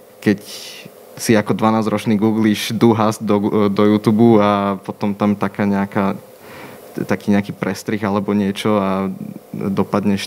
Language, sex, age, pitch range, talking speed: Slovak, male, 20-39, 100-110 Hz, 125 wpm